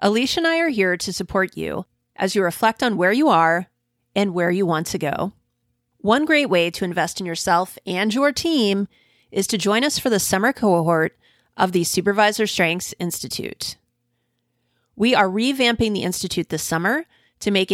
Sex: female